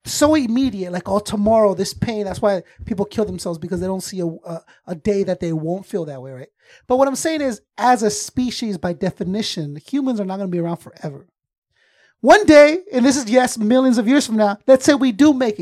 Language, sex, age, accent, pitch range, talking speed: English, male, 30-49, American, 185-260 Hz, 235 wpm